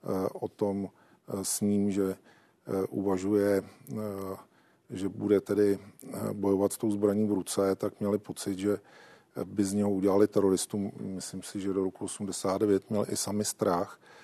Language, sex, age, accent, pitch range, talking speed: Czech, male, 40-59, native, 95-105 Hz, 145 wpm